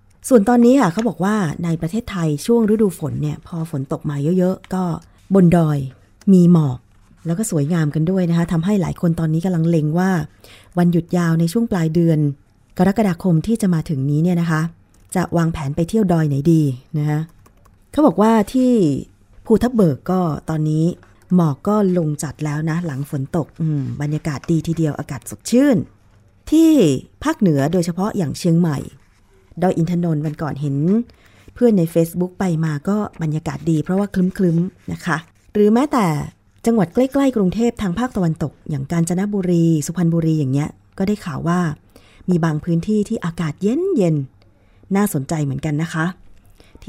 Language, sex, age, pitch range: Thai, female, 20-39, 150-190 Hz